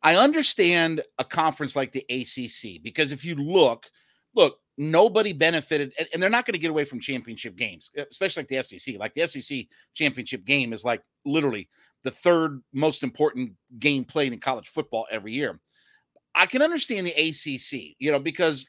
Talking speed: 180 wpm